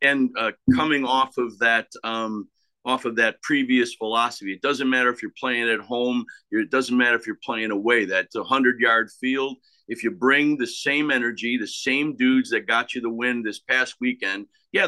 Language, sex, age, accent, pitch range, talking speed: English, male, 50-69, American, 125-150 Hz, 200 wpm